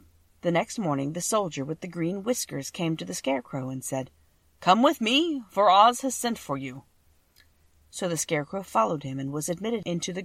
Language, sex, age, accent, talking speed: English, female, 40-59, American, 200 wpm